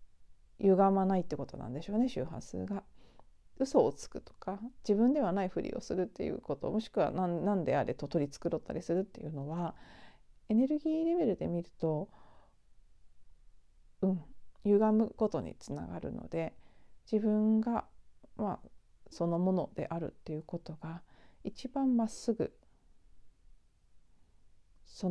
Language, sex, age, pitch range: Japanese, female, 40-59, 155-205 Hz